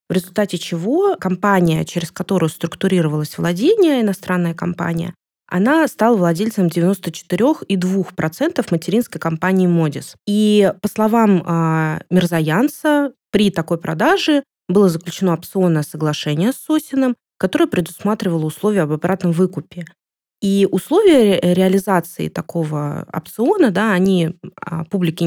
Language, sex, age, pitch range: Russian, female, 20-39, 165-210 Hz